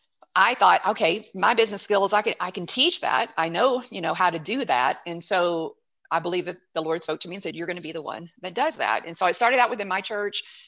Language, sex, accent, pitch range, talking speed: English, female, American, 165-210 Hz, 275 wpm